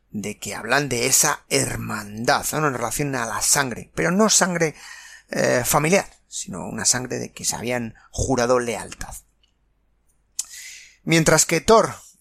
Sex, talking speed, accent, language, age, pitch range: male, 140 wpm, Spanish, Spanish, 30-49, 125-170 Hz